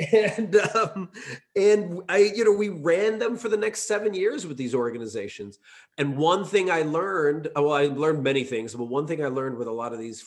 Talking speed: 215 wpm